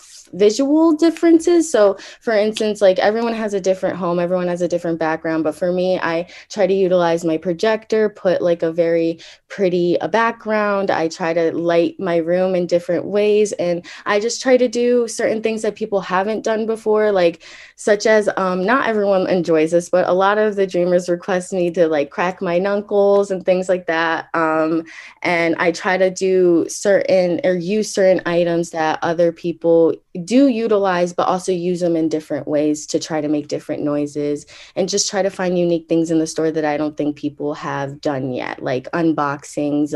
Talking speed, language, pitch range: 190 wpm, English, 160-200 Hz